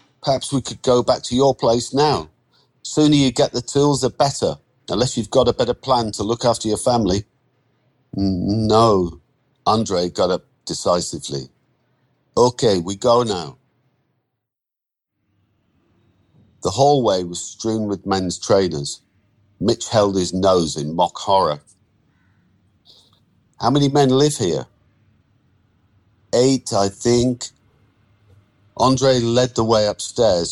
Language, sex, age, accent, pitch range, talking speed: English, male, 50-69, British, 95-120 Hz, 125 wpm